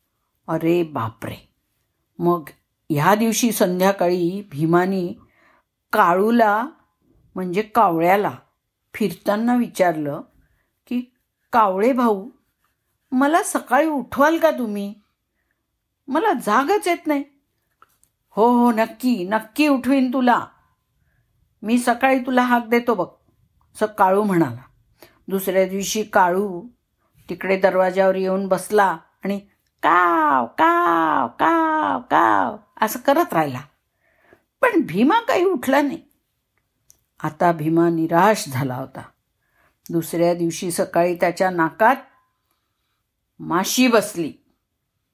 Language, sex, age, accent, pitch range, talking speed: Marathi, female, 50-69, native, 175-260 Hz, 95 wpm